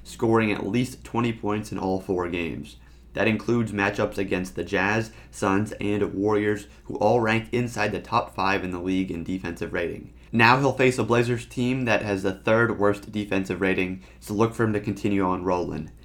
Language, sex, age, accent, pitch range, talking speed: English, male, 30-49, American, 100-120 Hz, 195 wpm